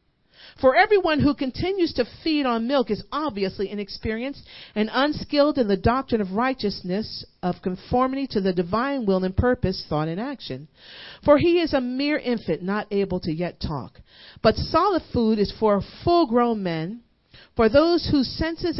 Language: English